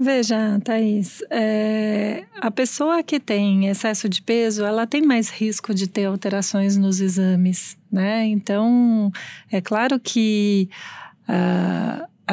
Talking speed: 115 wpm